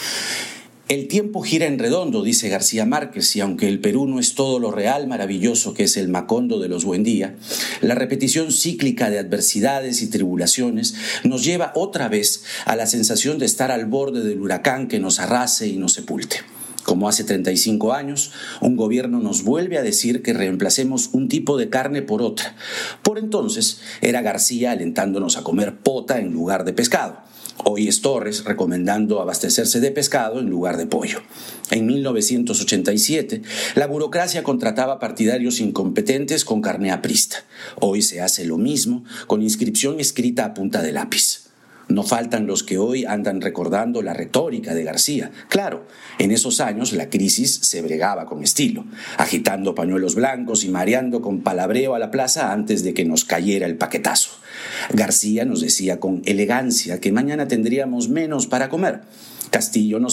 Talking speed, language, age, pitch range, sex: 165 wpm, Spanish, 50-69, 105-160 Hz, male